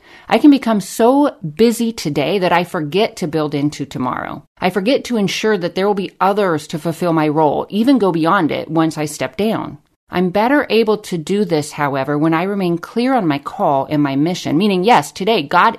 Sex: female